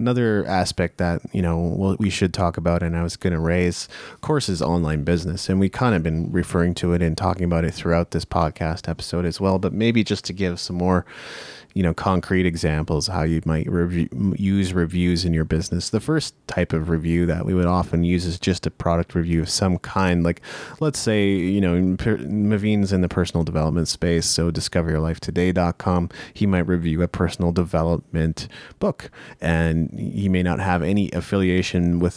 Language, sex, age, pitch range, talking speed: English, male, 30-49, 85-95 Hz, 190 wpm